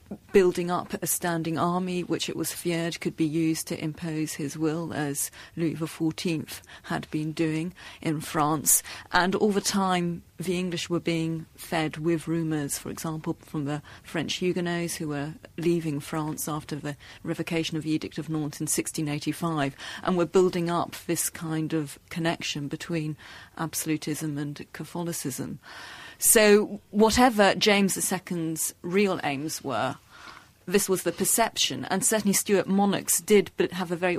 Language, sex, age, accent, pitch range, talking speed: English, female, 40-59, British, 155-180 Hz, 150 wpm